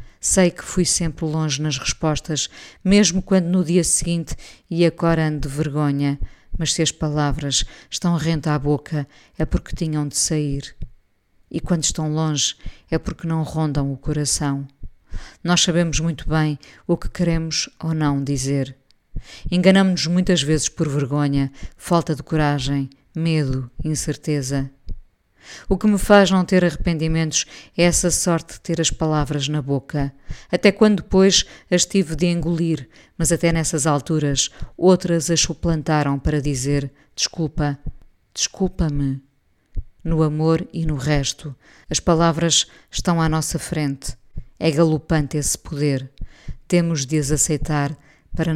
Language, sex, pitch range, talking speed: Portuguese, female, 145-170 Hz, 140 wpm